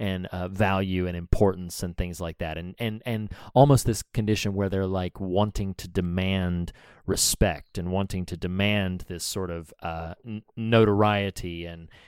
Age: 30-49